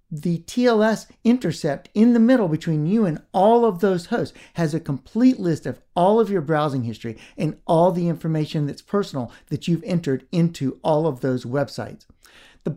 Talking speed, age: 180 wpm, 50-69